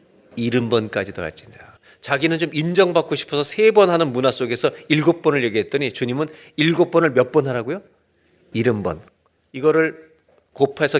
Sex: male